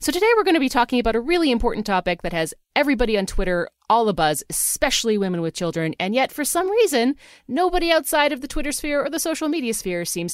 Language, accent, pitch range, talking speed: English, American, 160-235 Hz, 230 wpm